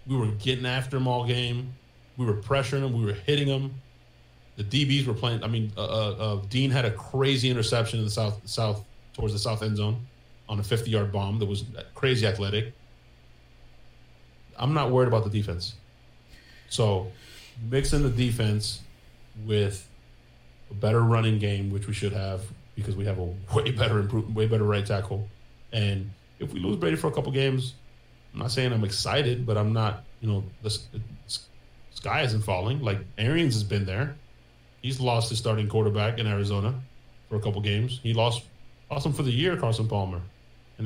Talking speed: 185 wpm